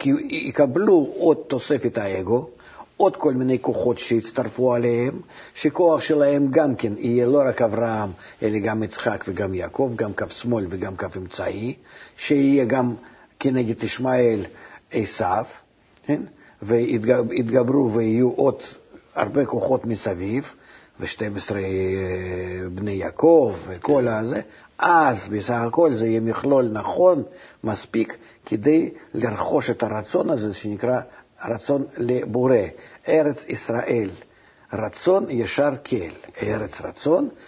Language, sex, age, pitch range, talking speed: Hebrew, male, 50-69, 110-140 Hz, 110 wpm